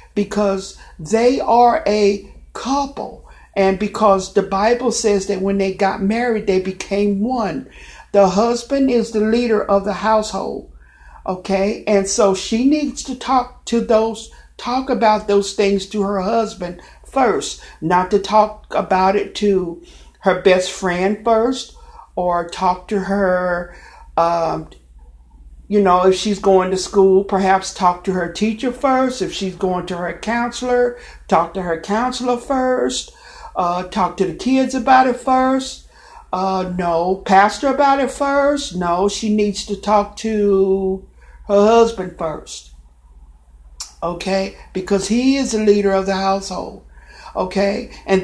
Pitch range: 185-235 Hz